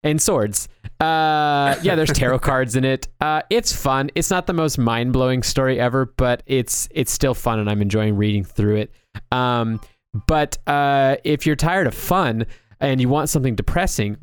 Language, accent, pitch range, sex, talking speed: English, American, 115-150 Hz, male, 180 wpm